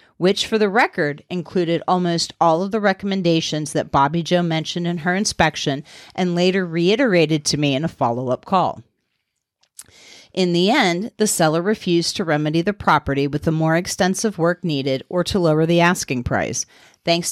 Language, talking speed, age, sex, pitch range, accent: English, 175 wpm, 40-59, female, 155-185 Hz, American